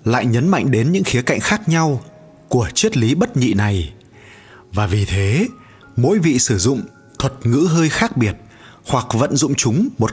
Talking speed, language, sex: 190 wpm, Vietnamese, male